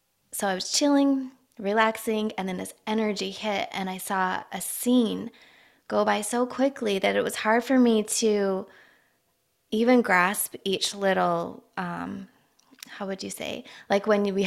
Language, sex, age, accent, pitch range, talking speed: English, female, 20-39, American, 185-225 Hz, 160 wpm